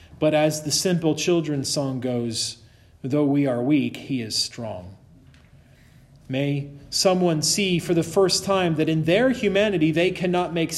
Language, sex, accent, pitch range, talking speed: English, male, American, 125-165 Hz, 155 wpm